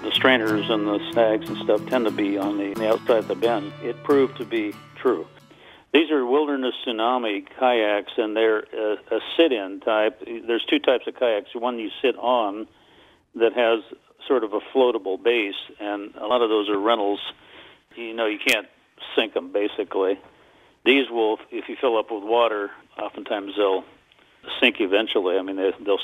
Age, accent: 50-69, American